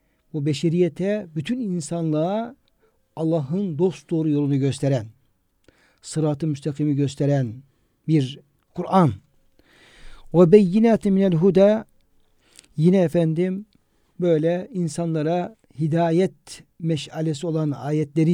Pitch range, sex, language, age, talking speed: 145-185 Hz, male, Turkish, 60-79, 85 wpm